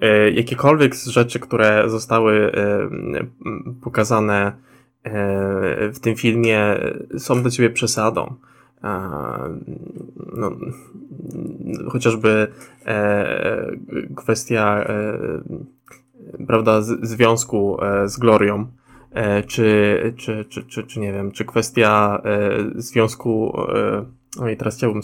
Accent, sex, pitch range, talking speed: native, male, 105-130 Hz, 85 wpm